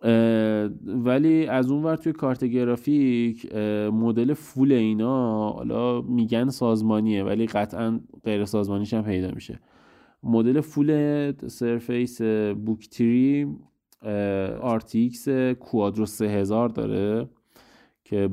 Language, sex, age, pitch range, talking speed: Persian, male, 20-39, 105-120 Hz, 95 wpm